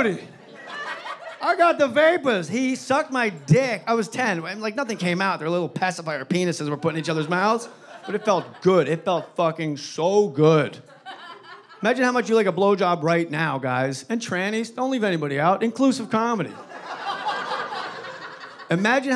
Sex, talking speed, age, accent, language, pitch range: male, 165 wpm, 30-49, American, English, 160-230 Hz